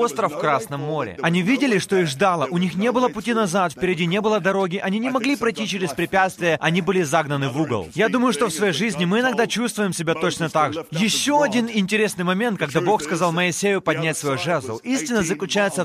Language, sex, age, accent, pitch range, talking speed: Russian, male, 20-39, native, 175-225 Hz, 210 wpm